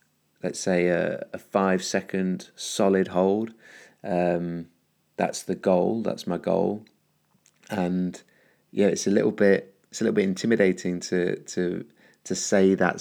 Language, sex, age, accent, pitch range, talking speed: English, male, 30-49, British, 85-95 Hz, 145 wpm